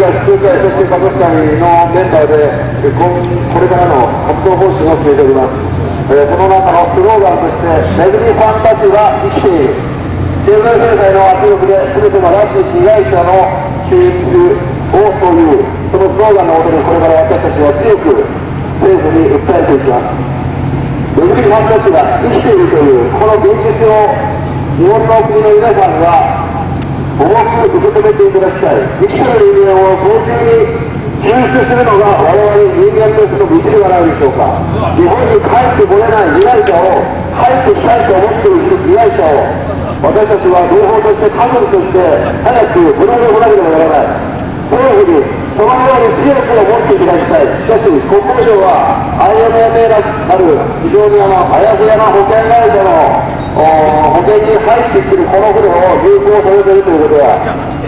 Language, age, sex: Japanese, 50-69, male